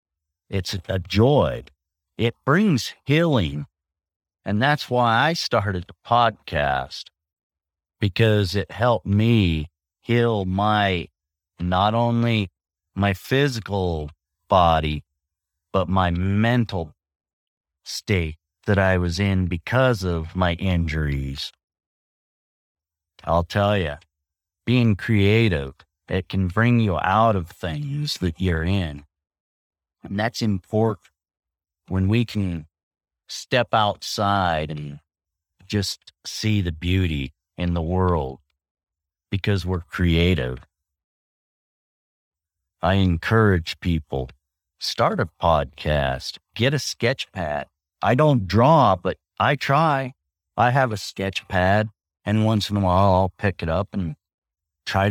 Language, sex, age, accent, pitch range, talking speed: English, male, 50-69, American, 75-105 Hz, 110 wpm